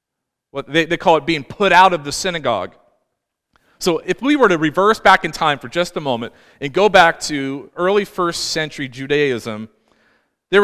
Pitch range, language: 145-190 Hz, English